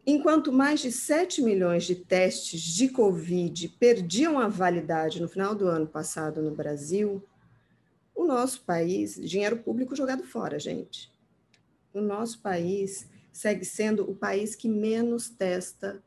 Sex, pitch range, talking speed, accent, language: female, 170-215 Hz, 140 wpm, Brazilian, Portuguese